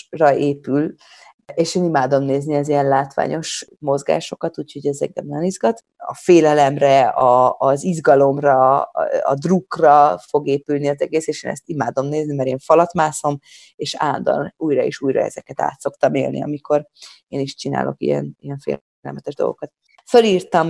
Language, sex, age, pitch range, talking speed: Hungarian, female, 30-49, 140-165 Hz, 150 wpm